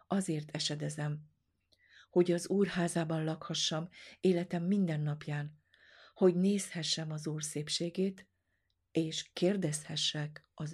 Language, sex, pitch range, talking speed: Hungarian, female, 145-170 Hz, 95 wpm